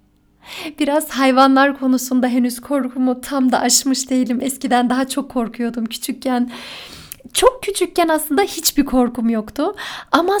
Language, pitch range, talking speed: Turkish, 245-310 Hz, 120 wpm